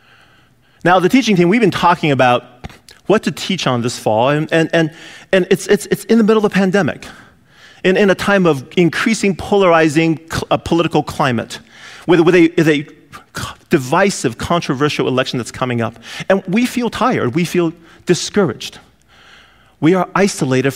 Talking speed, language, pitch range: 160 wpm, English, 150-200 Hz